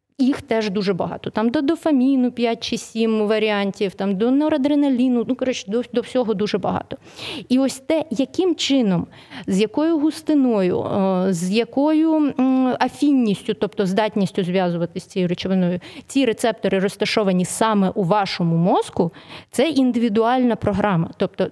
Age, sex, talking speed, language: 30-49, female, 135 wpm, Ukrainian